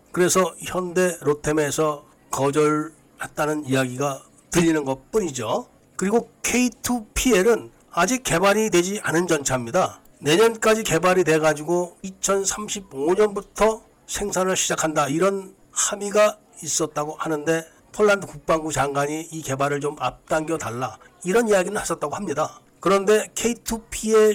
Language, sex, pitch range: Korean, male, 150-200 Hz